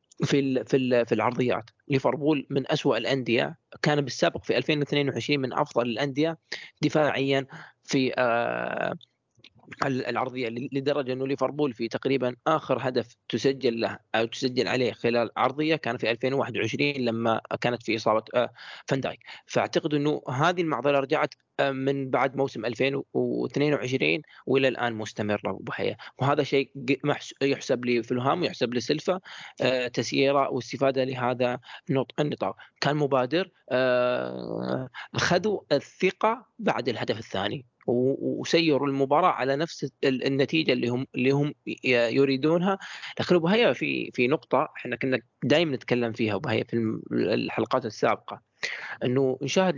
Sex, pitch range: male, 120-145 Hz